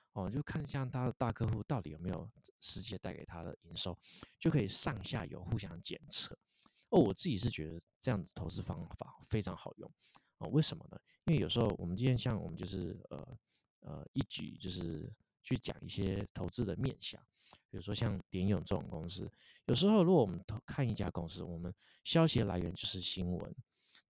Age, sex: 30-49, male